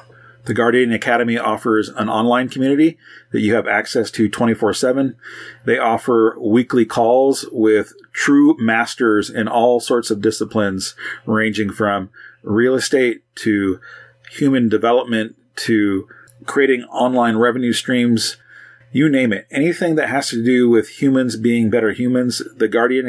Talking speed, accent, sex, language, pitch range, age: 135 wpm, American, male, English, 110-120 Hz, 30-49